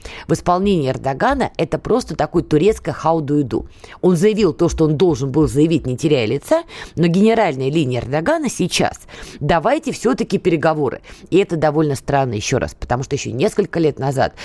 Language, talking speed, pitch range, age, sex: Russian, 160 wpm, 145-200 Hz, 20-39, female